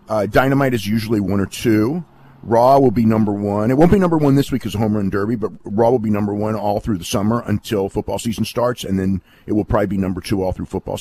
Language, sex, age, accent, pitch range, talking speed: English, male, 40-59, American, 100-125 Hz, 260 wpm